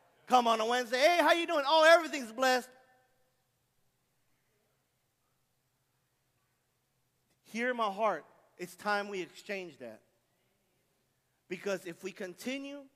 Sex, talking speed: male, 105 wpm